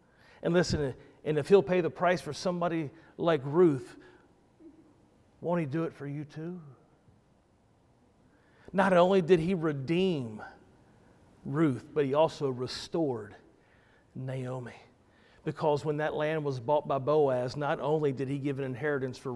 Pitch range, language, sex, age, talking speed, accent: 135-160 Hz, English, male, 40-59, 145 wpm, American